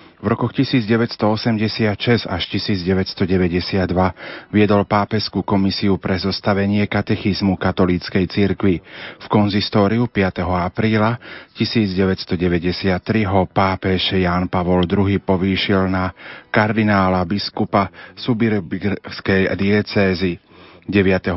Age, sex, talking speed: 40-59, male, 85 wpm